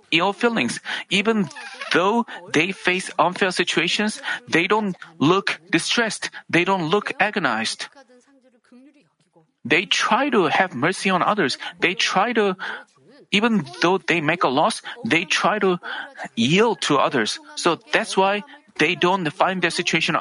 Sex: male